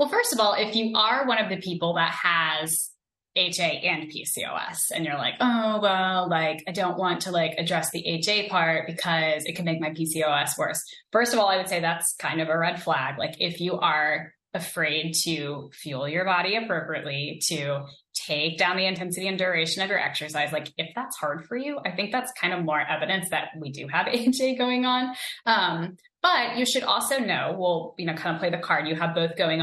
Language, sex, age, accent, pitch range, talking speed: English, female, 10-29, American, 155-195 Hz, 215 wpm